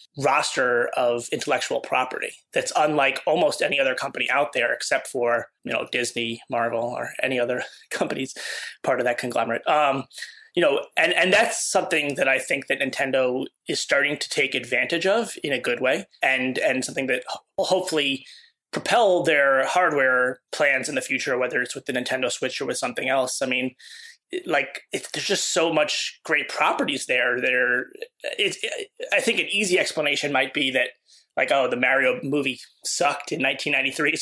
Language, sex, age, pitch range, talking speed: English, male, 20-39, 130-195 Hz, 180 wpm